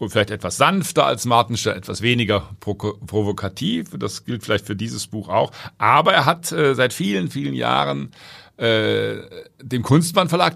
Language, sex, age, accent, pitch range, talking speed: German, male, 50-69, German, 110-145 Hz, 155 wpm